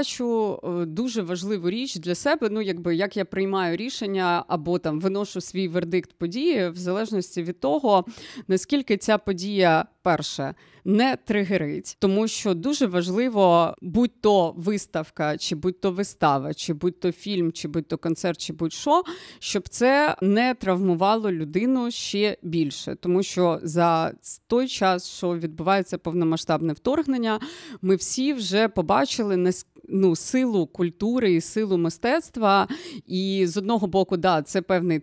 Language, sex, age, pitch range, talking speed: Ukrainian, female, 30-49, 170-215 Hz, 135 wpm